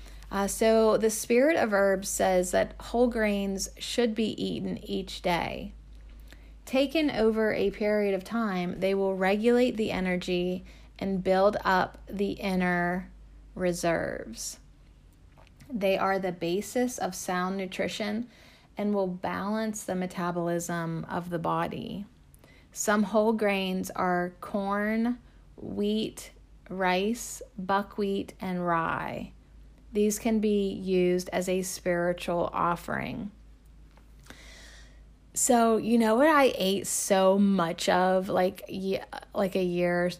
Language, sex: English, female